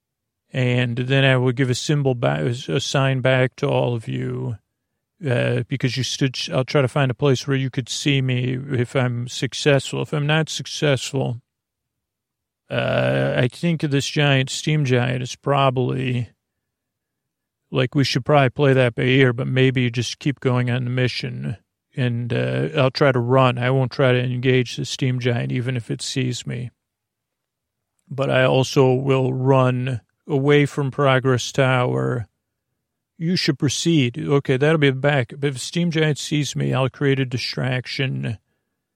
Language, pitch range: English, 125-140 Hz